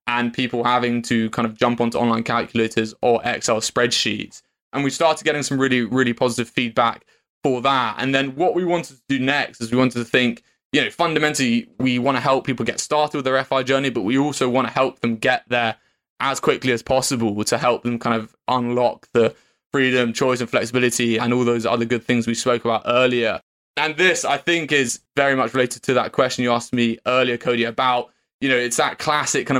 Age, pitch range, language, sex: 20-39, 120-130 Hz, English, male